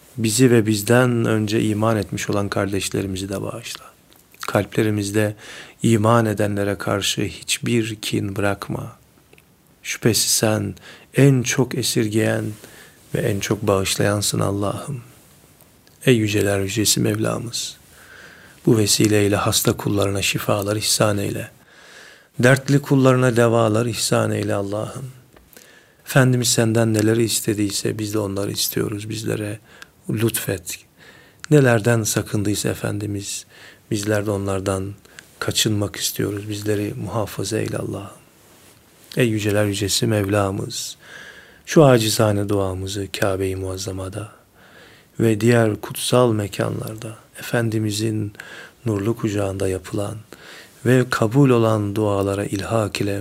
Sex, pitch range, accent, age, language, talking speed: male, 100-115 Hz, native, 40-59, Turkish, 100 wpm